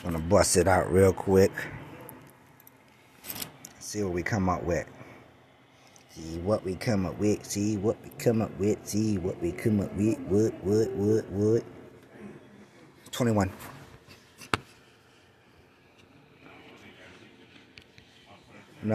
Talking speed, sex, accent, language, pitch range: 110 wpm, male, American, English, 90-115 Hz